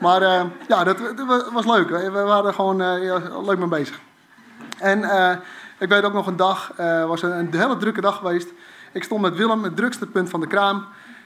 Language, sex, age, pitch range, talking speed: Dutch, male, 30-49, 170-195 Hz, 215 wpm